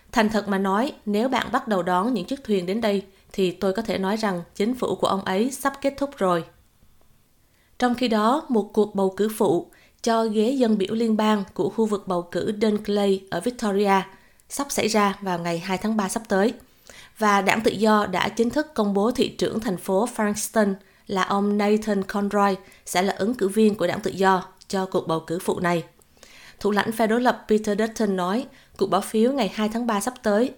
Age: 20-39